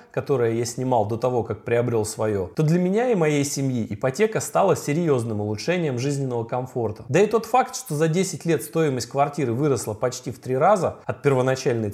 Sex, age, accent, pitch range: male, 30-49, native, 115-155 Hz